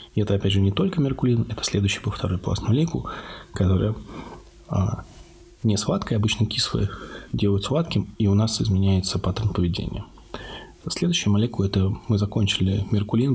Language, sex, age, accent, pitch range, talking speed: Russian, male, 20-39, native, 95-115 Hz, 140 wpm